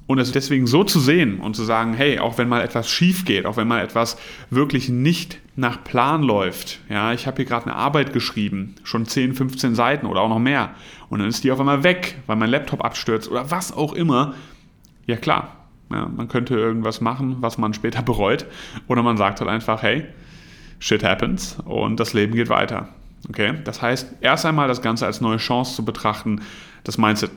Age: 30-49